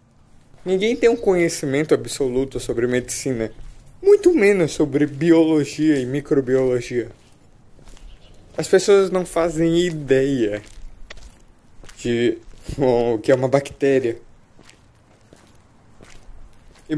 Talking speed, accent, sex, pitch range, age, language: 90 wpm, Brazilian, male, 115-165 Hz, 20-39, Portuguese